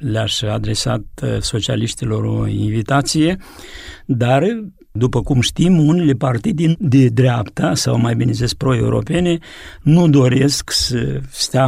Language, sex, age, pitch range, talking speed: Romanian, male, 50-69, 125-160 Hz, 115 wpm